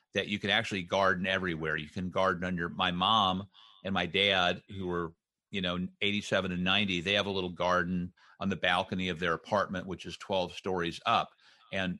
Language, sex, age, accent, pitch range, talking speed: English, male, 40-59, American, 90-100 Hz, 195 wpm